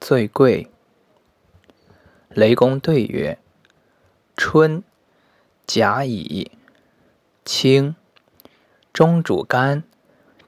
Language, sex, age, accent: Chinese, male, 20-39, native